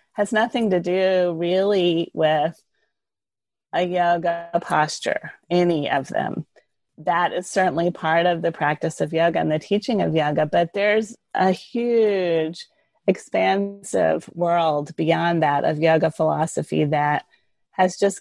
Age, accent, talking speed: 30-49, American, 130 wpm